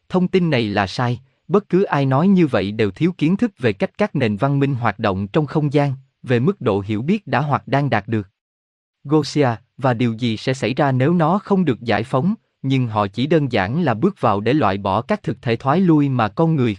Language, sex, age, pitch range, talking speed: Vietnamese, male, 20-39, 110-155 Hz, 245 wpm